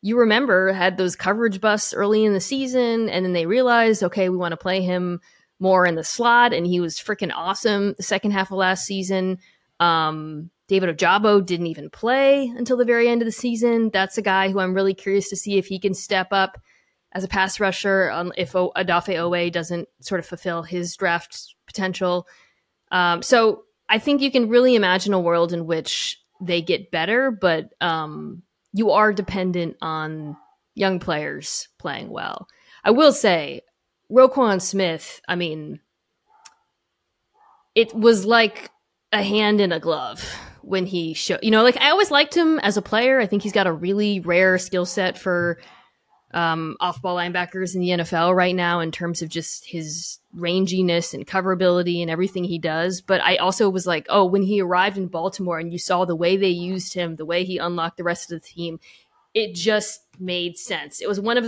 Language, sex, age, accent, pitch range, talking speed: English, female, 20-39, American, 175-220 Hz, 190 wpm